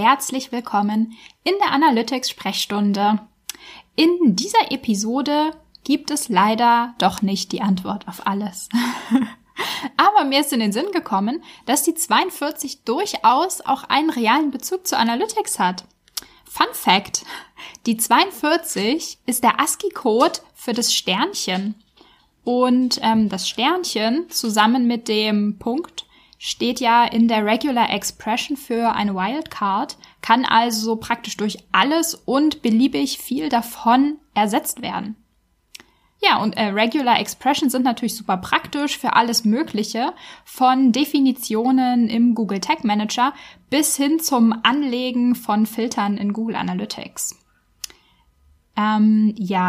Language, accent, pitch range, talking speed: German, German, 215-290 Hz, 125 wpm